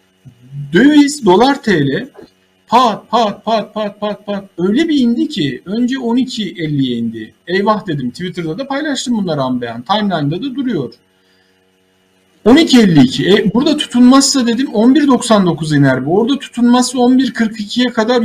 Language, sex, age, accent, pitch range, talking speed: Turkish, male, 50-69, native, 140-230 Hz, 125 wpm